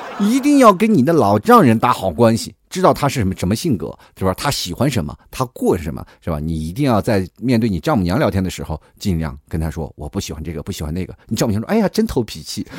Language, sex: Chinese, male